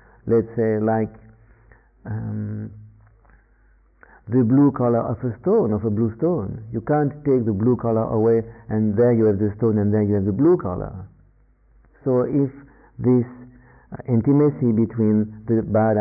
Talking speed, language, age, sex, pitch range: 155 wpm, English, 50-69, male, 110-125 Hz